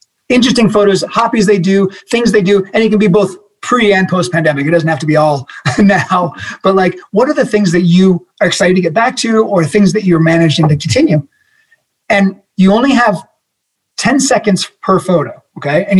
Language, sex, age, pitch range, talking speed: English, male, 30-49, 165-210 Hz, 205 wpm